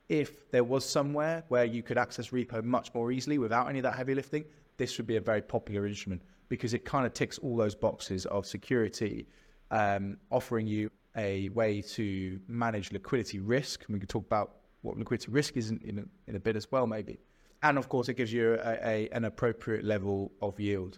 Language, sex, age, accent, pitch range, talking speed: English, male, 20-39, British, 110-130 Hz, 210 wpm